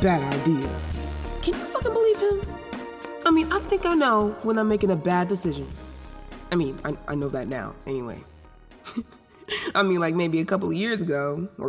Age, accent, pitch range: 20-39, American, 165-250 Hz